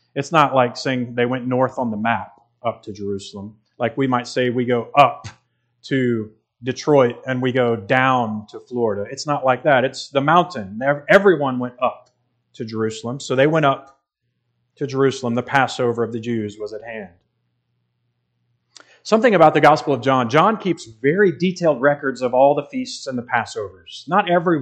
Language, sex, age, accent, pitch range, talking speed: English, male, 30-49, American, 120-155 Hz, 180 wpm